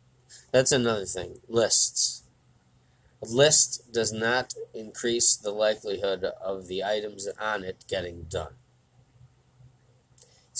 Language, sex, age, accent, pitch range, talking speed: English, male, 20-39, American, 110-130 Hz, 110 wpm